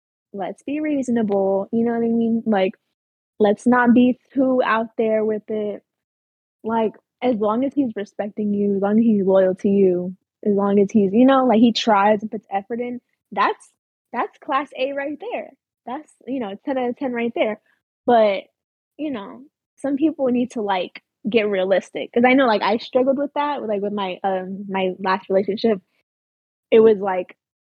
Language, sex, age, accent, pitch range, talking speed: English, female, 10-29, American, 200-250 Hz, 190 wpm